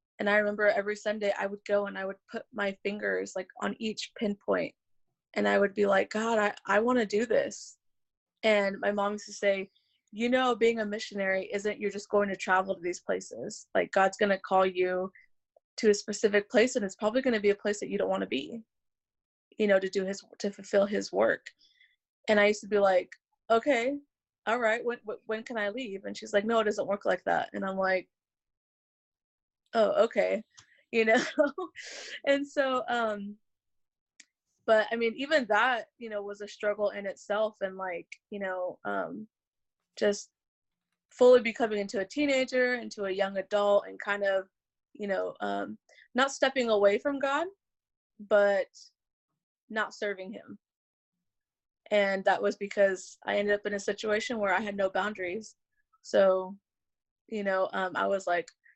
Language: English